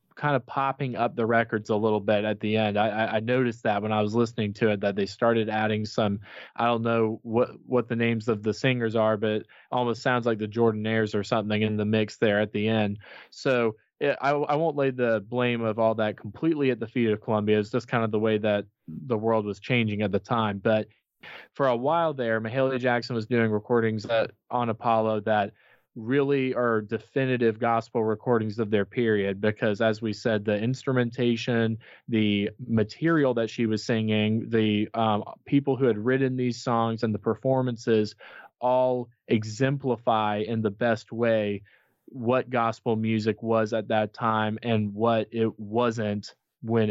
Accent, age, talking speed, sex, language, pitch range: American, 20-39, 190 wpm, male, English, 105-120 Hz